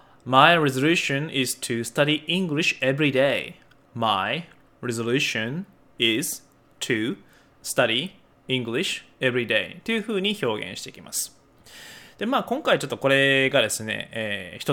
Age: 20-39